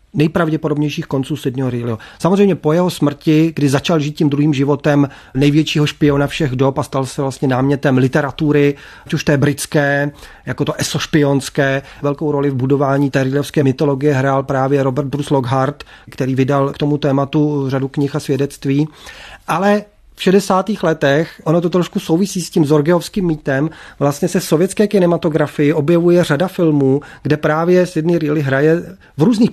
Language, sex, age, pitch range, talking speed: Czech, male, 30-49, 140-165 Hz, 155 wpm